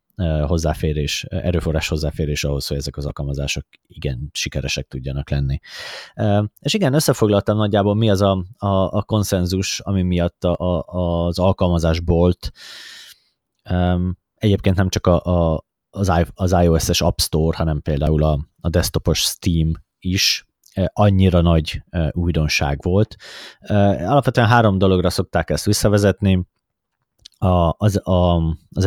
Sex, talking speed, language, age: male, 110 wpm, Hungarian, 30-49